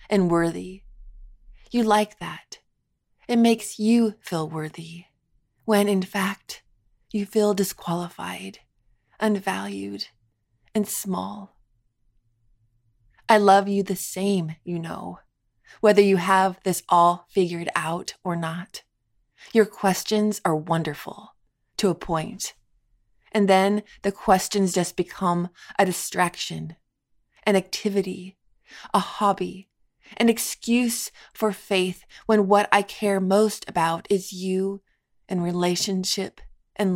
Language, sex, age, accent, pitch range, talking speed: English, female, 20-39, American, 170-210 Hz, 110 wpm